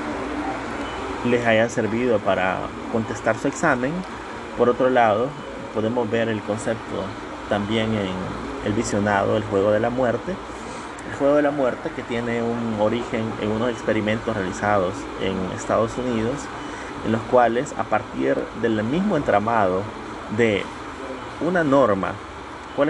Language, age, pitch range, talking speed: Spanish, 30-49, 105-125 Hz, 135 wpm